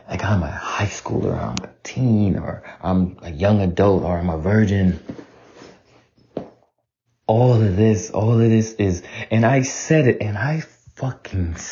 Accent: American